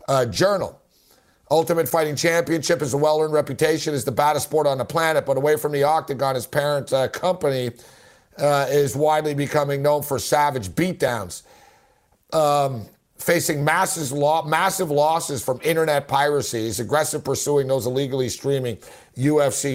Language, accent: English, American